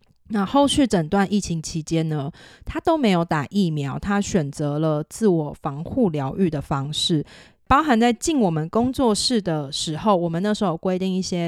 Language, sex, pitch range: Chinese, female, 155-205 Hz